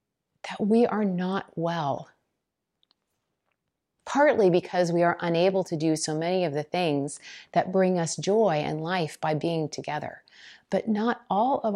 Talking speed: 155 wpm